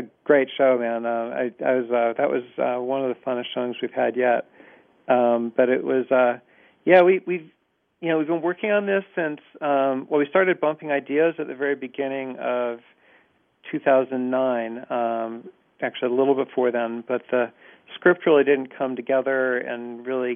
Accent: American